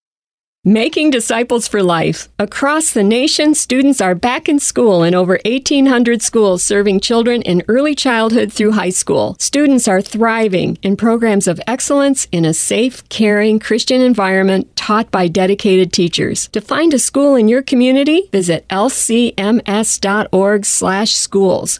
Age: 50-69